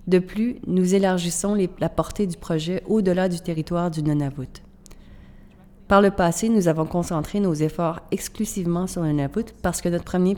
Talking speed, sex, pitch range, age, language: 170 wpm, female, 155-180 Hz, 30-49, French